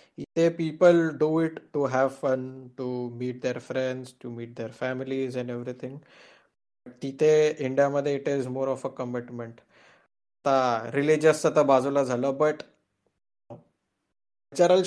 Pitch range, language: 130-170 Hz, Marathi